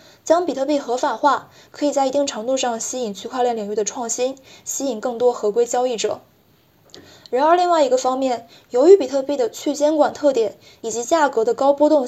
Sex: female